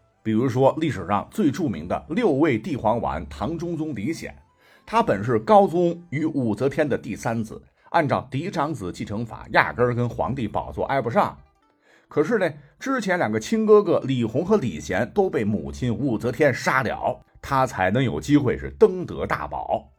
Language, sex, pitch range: Chinese, male, 105-155 Hz